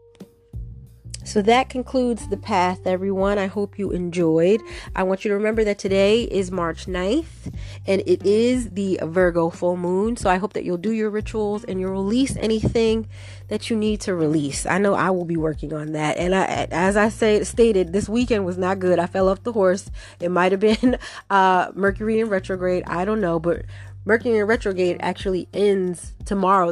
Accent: American